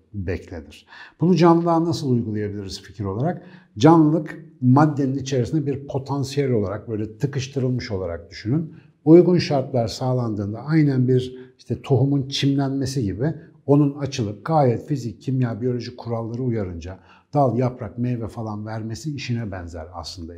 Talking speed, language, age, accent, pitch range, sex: 125 wpm, Turkish, 60-79, native, 105-140 Hz, male